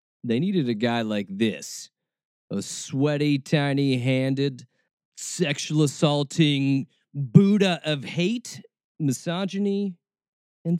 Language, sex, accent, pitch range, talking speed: English, male, American, 115-170 Hz, 85 wpm